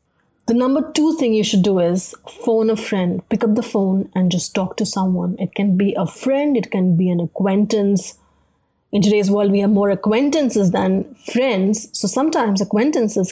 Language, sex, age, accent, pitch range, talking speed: English, female, 30-49, Indian, 190-225 Hz, 190 wpm